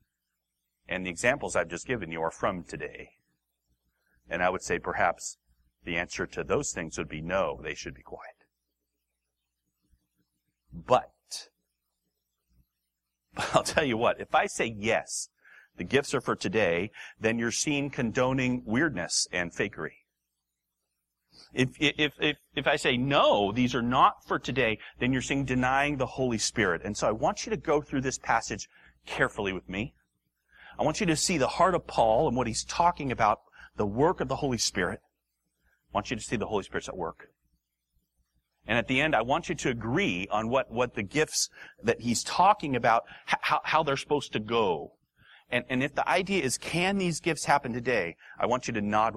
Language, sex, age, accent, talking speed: English, male, 40-59, American, 185 wpm